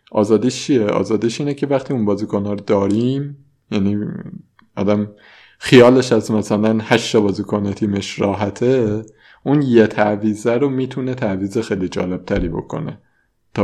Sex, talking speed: male, 130 wpm